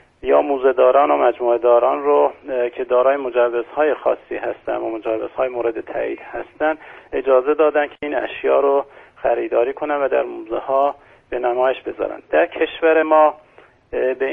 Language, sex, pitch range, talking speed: Persian, male, 120-150 Hz, 145 wpm